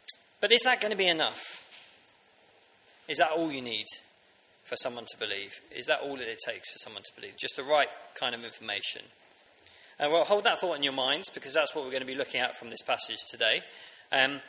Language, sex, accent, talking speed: English, male, British, 225 wpm